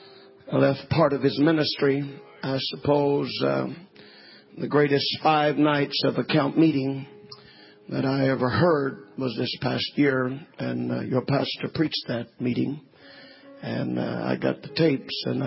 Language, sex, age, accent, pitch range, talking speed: English, male, 50-69, American, 130-160 Hz, 145 wpm